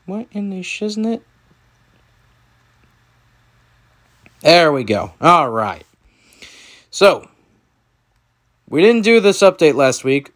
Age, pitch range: 30-49, 115-180 Hz